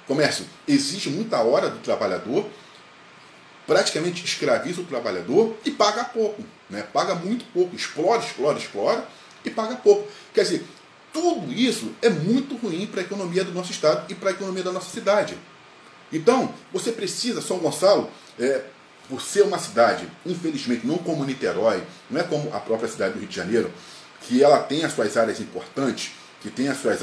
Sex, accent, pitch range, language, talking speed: male, Brazilian, 165-240 Hz, Portuguese, 175 wpm